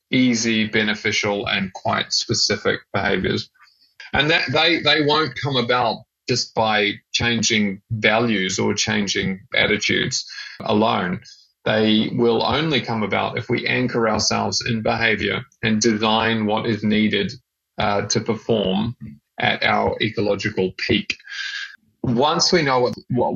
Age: 20-39